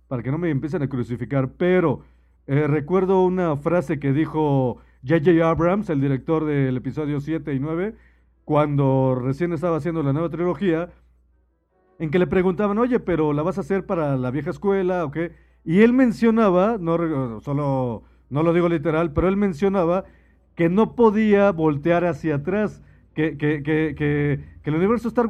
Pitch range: 140-190 Hz